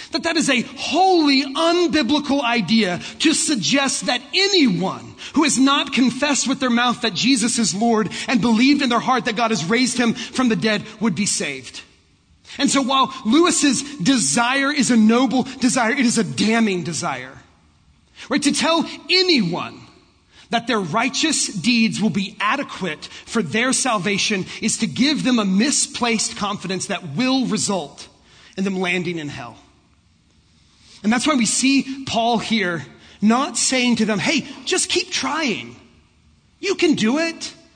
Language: English